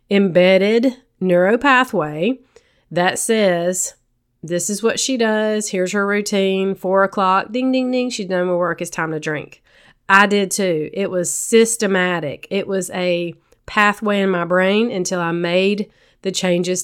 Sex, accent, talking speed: female, American, 155 wpm